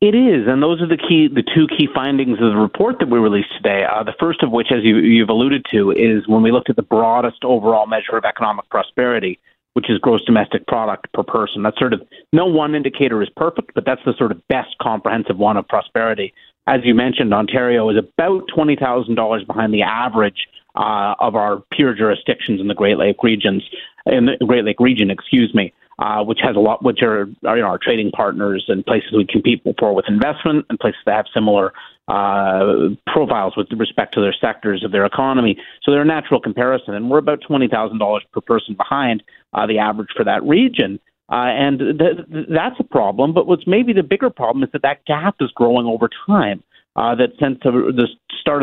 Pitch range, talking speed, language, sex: 110-145 Hz, 215 wpm, English, male